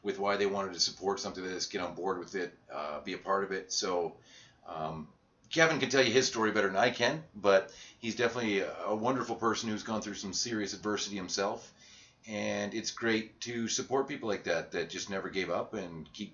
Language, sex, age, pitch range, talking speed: English, male, 30-49, 100-125 Hz, 220 wpm